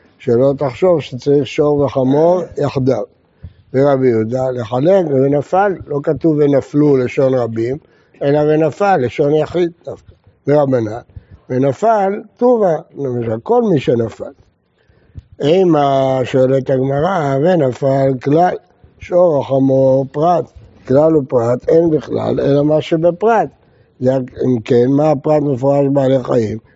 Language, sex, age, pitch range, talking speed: Hebrew, male, 60-79, 130-180 Hz, 110 wpm